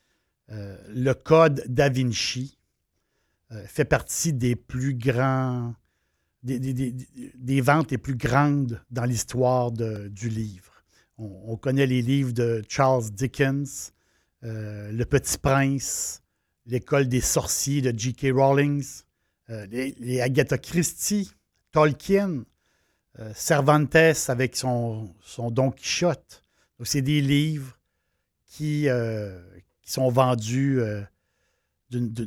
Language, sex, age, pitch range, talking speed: French, male, 60-79, 115-140 Hz, 125 wpm